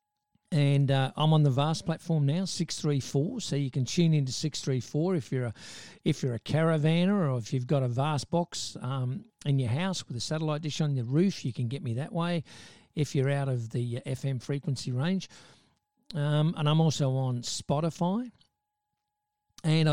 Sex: male